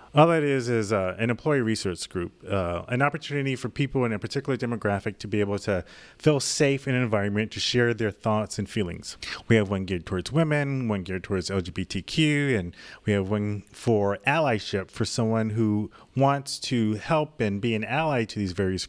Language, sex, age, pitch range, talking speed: English, male, 30-49, 100-130 Hz, 195 wpm